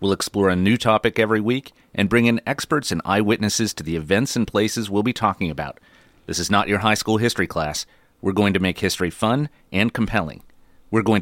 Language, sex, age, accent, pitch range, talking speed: English, male, 30-49, American, 90-115 Hz, 215 wpm